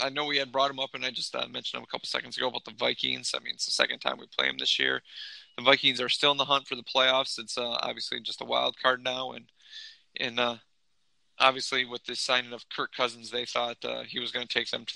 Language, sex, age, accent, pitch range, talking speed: English, male, 20-39, American, 120-135 Hz, 275 wpm